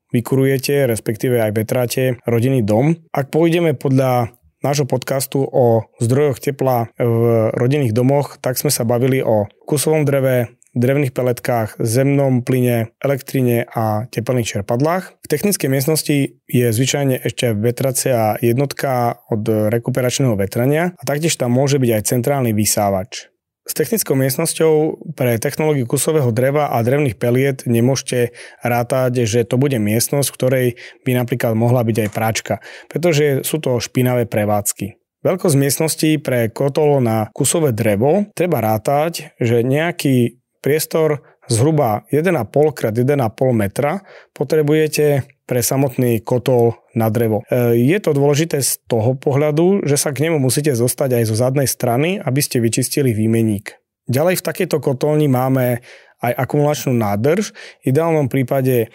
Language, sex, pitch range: Slovak, male, 120-150 Hz